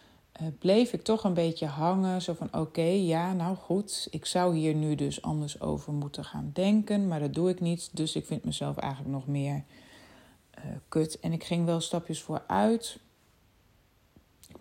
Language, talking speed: German, 175 wpm